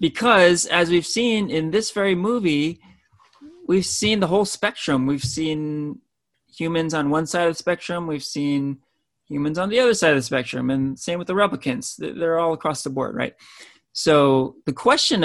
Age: 30-49